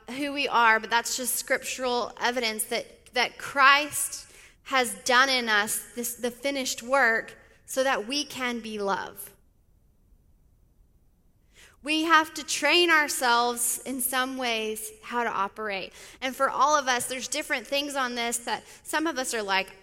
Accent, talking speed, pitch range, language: American, 155 wpm, 215-270 Hz, English